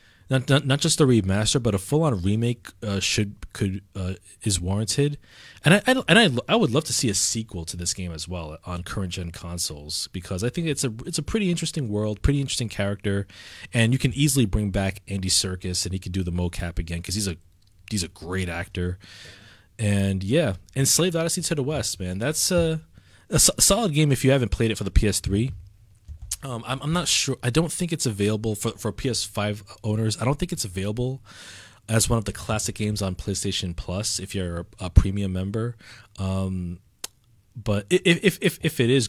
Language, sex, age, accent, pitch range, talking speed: English, male, 20-39, American, 90-120 Hz, 210 wpm